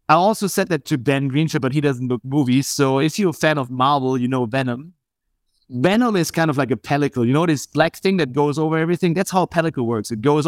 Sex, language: male, English